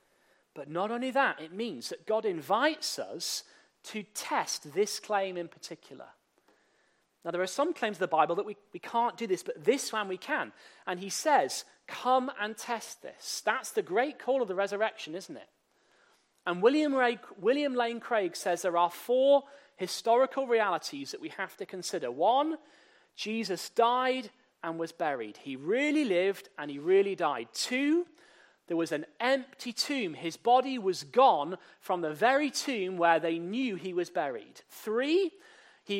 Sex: male